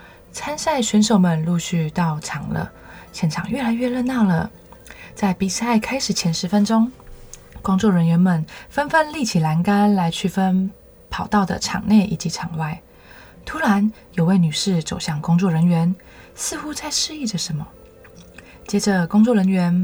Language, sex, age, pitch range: Chinese, female, 20-39, 170-210 Hz